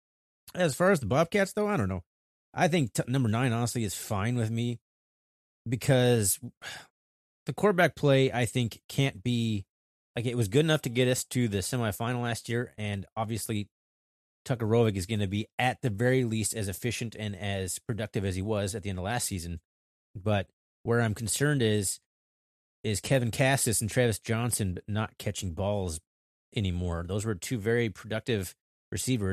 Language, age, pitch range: English, 30-49, 95-120 Hz